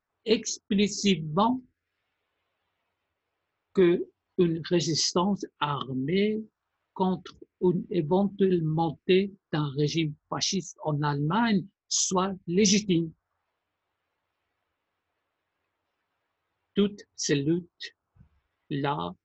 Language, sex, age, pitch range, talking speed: Persian, male, 60-79, 165-215 Hz, 60 wpm